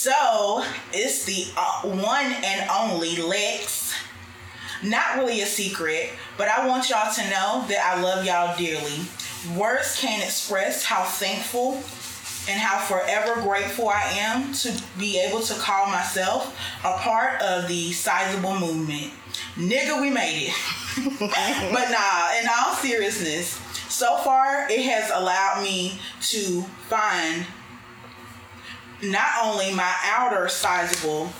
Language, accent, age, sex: English, American, 20-39, female